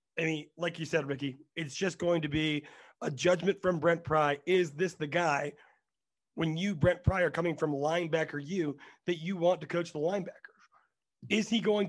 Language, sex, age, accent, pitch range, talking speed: English, male, 30-49, American, 150-185 Hz, 195 wpm